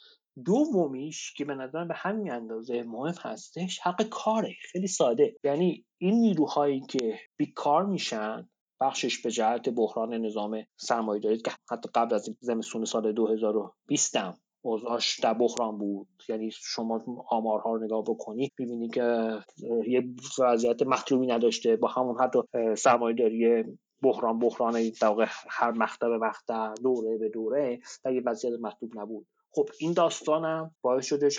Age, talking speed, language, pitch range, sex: 30-49, 140 wpm, Persian, 115-160 Hz, male